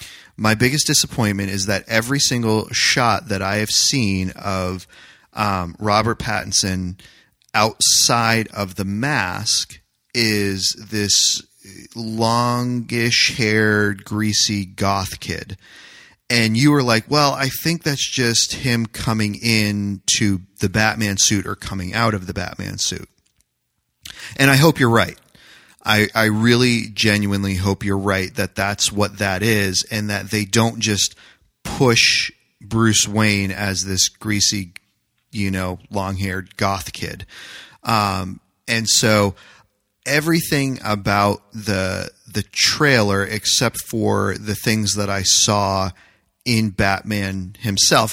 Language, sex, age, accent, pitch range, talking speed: English, male, 30-49, American, 100-115 Hz, 125 wpm